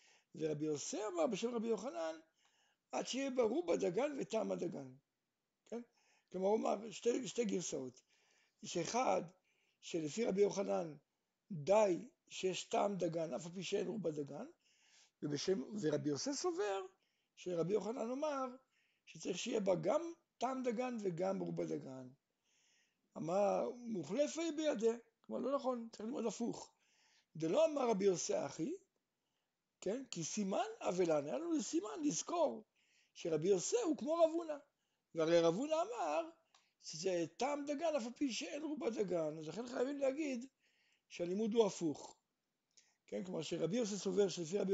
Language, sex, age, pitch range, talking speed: Hebrew, male, 60-79, 175-260 Hz, 135 wpm